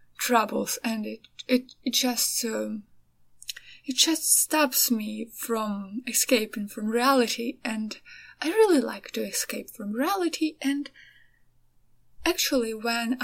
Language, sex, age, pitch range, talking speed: English, female, 20-39, 215-280 Hz, 120 wpm